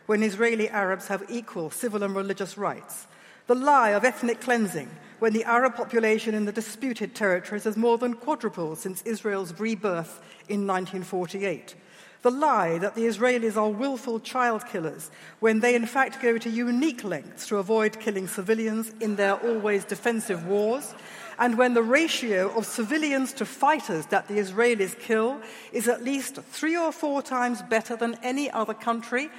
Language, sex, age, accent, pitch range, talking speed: English, female, 60-79, British, 200-245 Hz, 165 wpm